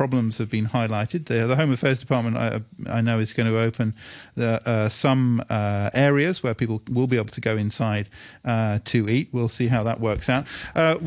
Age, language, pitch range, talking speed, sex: 50-69, English, 115-140 Hz, 210 wpm, male